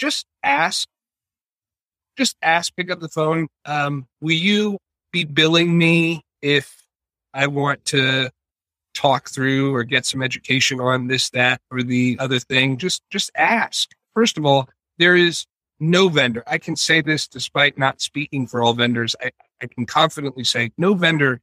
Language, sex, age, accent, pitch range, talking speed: English, male, 40-59, American, 125-155 Hz, 160 wpm